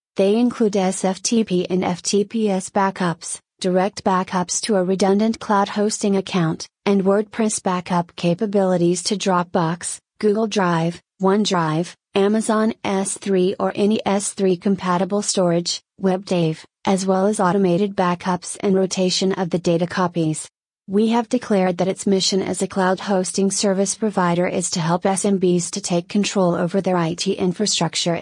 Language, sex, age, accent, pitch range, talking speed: English, female, 30-49, American, 180-200 Hz, 140 wpm